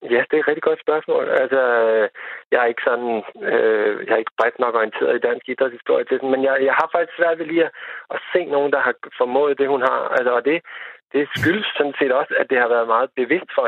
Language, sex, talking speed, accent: Danish, male, 245 wpm, native